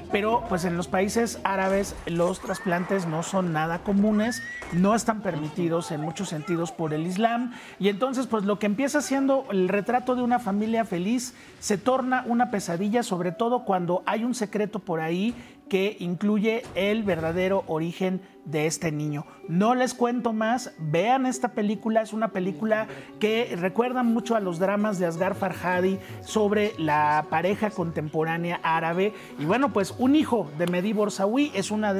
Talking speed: 165 wpm